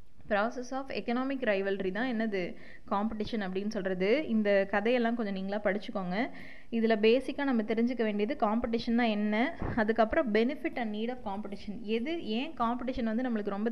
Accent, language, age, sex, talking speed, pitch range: native, Tamil, 20-39, female, 140 wpm, 210-260 Hz